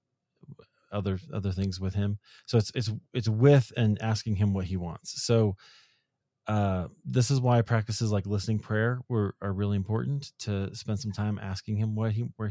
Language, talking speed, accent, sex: English, 180 wpm, American, male